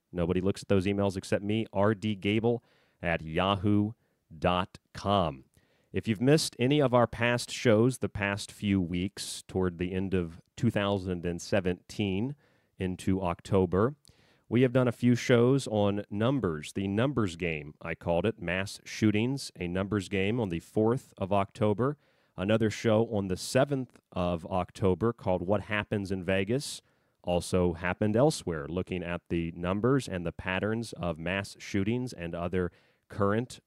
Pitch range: 95-120 Hz